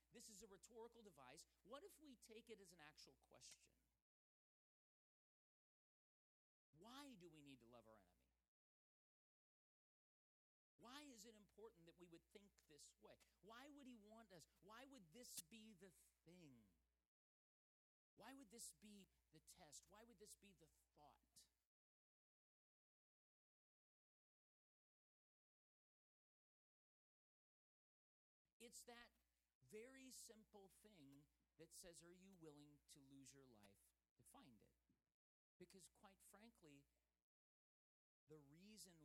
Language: English